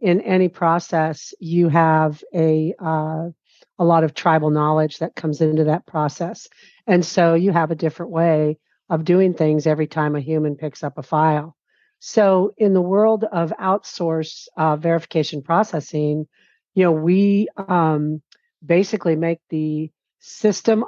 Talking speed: 150 wpm